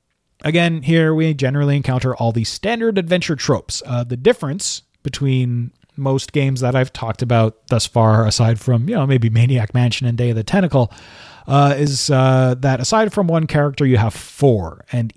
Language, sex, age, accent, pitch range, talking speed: English, male, 30-49, American, 120-160 Hz, 180 wpm